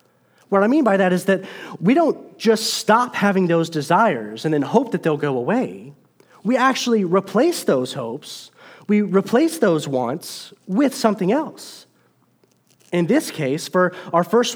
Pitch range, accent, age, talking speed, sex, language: 155-225 Hz, American, 30-49, 160 wpm, male, English